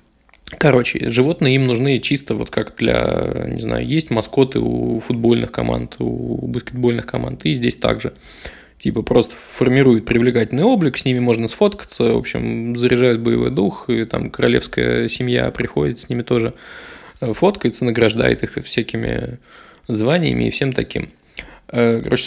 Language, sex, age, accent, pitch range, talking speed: Russian, male, 20-39, native, 115-130 Hz, 140 wpm